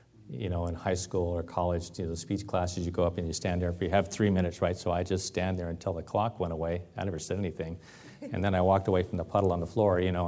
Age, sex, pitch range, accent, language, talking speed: 40-59, male, 90-105 Hz, American, English, 290 wpm